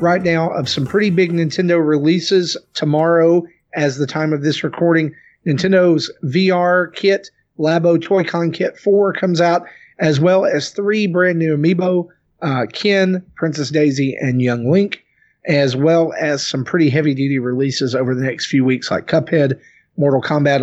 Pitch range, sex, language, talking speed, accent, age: 140-185 Hz, male, English, 165 wpm, American, 40-59